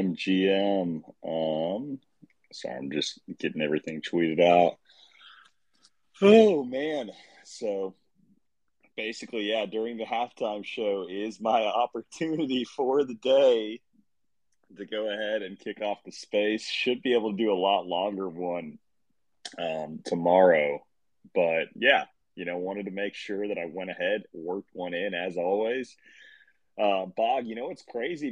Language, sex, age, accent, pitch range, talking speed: English, male, 30-49, American, 95-160 Hz, 140 wpm